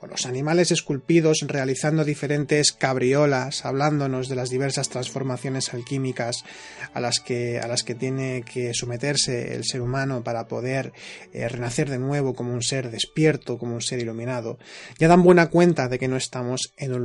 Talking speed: 170 wpm